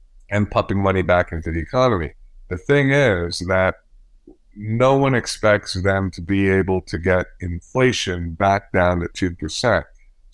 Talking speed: 145 wpm